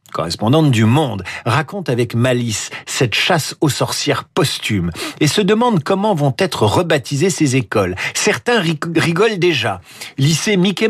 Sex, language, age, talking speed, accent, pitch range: male, French, 50-69, 140 wpm, French, 115-195 Hz